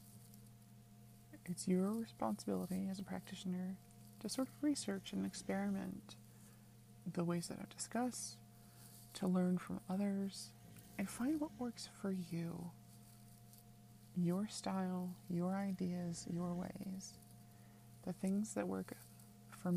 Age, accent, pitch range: 30-49, American, 115-190 Hz